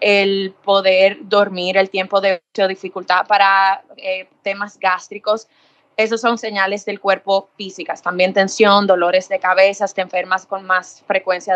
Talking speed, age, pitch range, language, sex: 145 wpm, 20-39, 190-215 Hz, Spanish, female